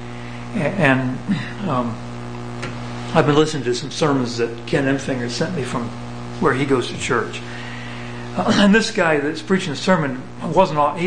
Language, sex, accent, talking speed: English, male, American, 150 wpm